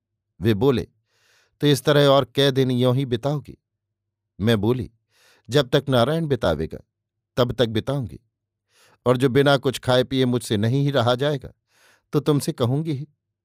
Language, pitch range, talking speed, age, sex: Hindi, 110-135 Hz, 155 wpm, 50-69, male